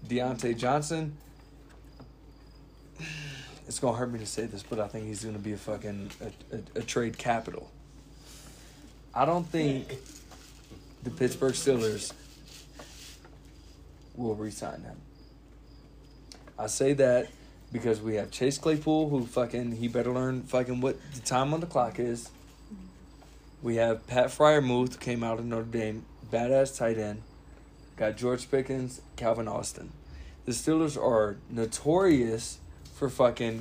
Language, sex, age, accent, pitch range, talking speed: English, male, 20-39, American, 110-140 Hz, 135 wpm